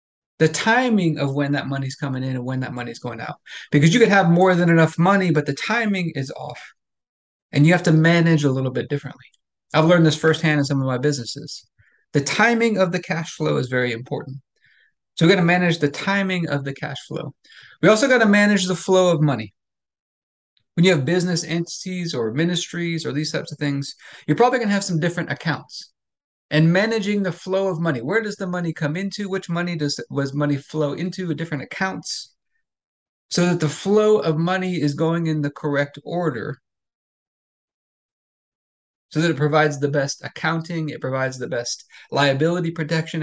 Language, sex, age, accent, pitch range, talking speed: English, male, 30-49, American, 145-180 Hz, 195 wpm